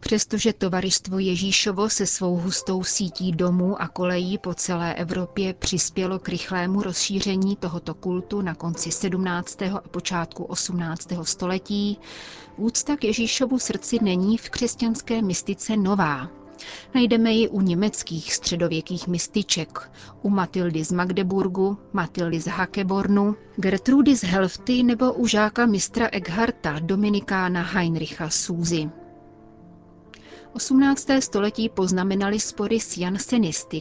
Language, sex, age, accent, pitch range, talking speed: Czech, female, 30-49, native, 175-210 Hz, 115 wpm